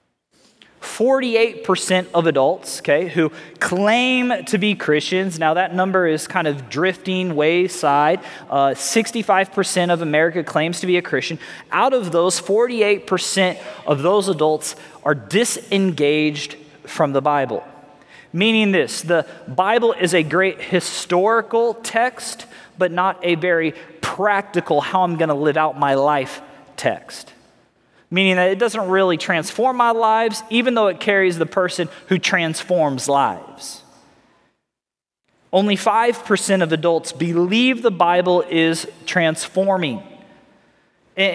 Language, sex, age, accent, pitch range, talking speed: English, male, 20-39, American, 165-210 Hz, 125 wpm